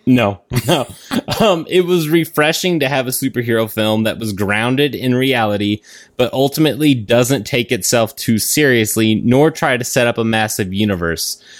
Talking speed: 160 wpm